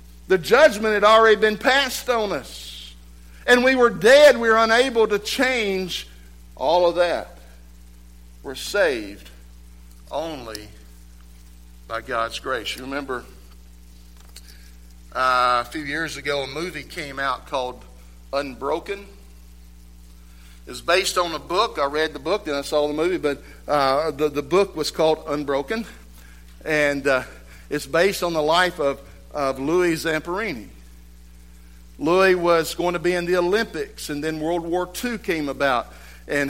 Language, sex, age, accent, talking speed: English, male, 60-79, American, 145 wpm